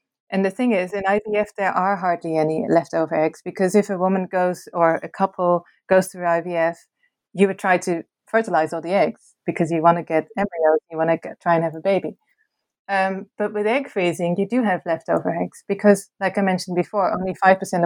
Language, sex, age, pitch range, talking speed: English, female, 30-49, 170-200 Hz, 210 wpm